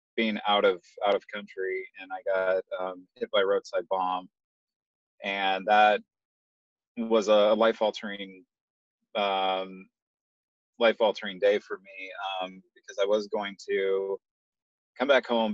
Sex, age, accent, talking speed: male, 30-49, American, 130 wpm